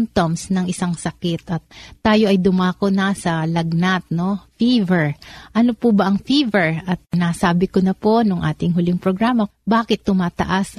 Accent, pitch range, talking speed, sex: native, 175-210 Hz, 165 wpm, female